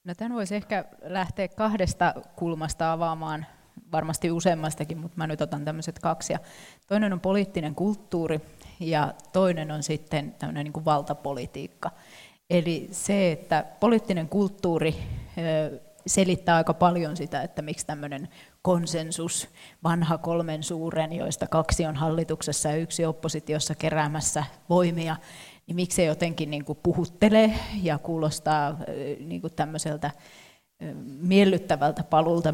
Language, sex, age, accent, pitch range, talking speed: Finnish, female, 30-49, native, 155-180 Hz, 110 wpm